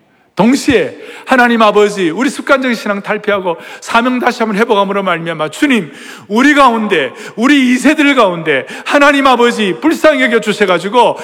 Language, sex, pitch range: Korean, male, 180-275 Hz